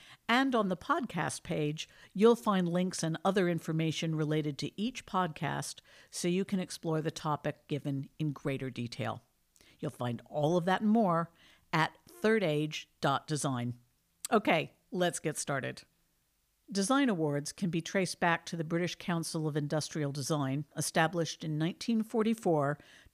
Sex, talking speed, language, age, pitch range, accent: female, 140 wpm, English, 50-69, 145-180 Hz, American